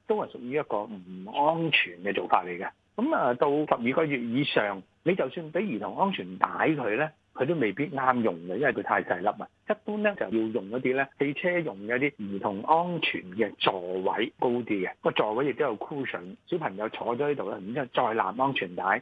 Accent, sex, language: native, male, Chinese